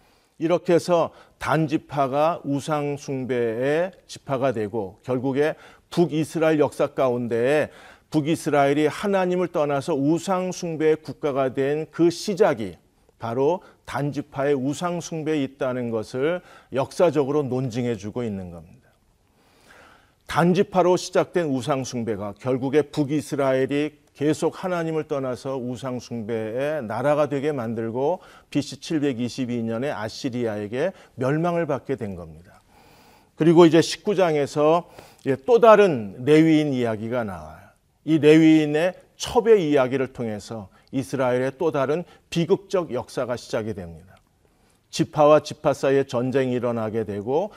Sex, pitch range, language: male, 120-155 Hz, Korean